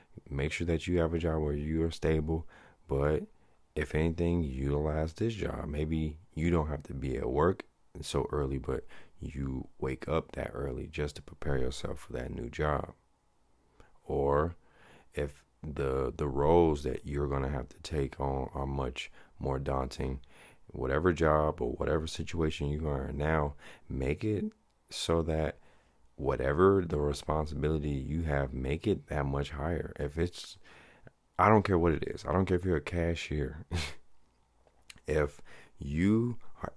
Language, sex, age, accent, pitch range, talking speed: English, male, 30-49, American, 70-85 Hz, 160 wpm